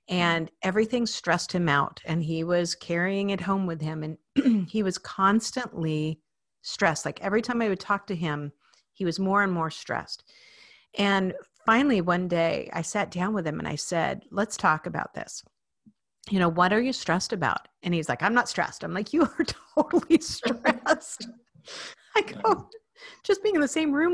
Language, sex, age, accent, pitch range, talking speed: English, female, 50-69, American, 165-215 Hz, 185 wpm